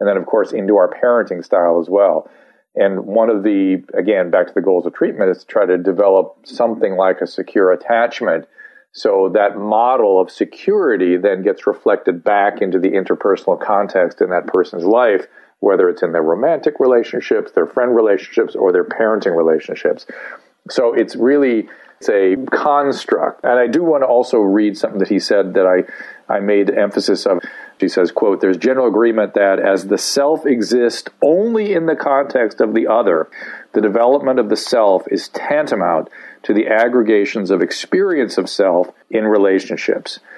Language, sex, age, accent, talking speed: English, male, 50-69, American, 175 wpm